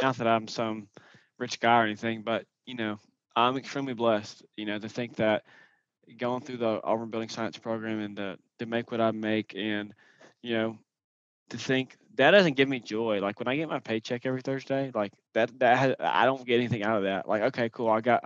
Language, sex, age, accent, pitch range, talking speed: English, male, 20-39, American, 115-130 Hz, 215 wpm